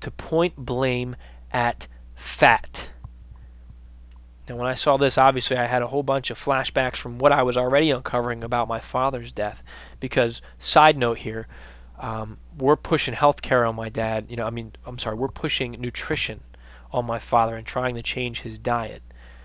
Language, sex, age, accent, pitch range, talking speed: English, male, 20-39, American, 100-135 Hz, 180 wpm